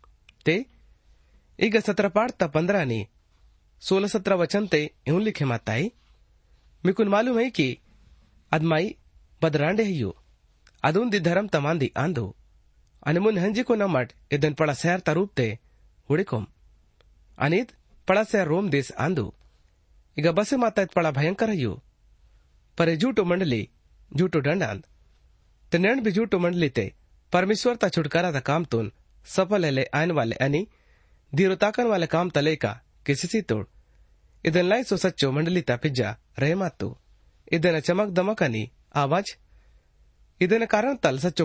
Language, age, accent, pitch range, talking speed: Hindi, 30-49, native, 115-190 Hz, 80 wpm